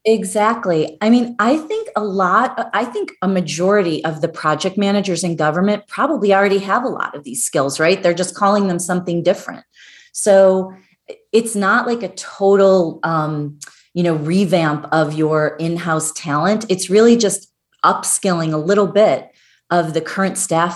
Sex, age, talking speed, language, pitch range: female, 30-49, 170 wpm, English, 160-195 Hz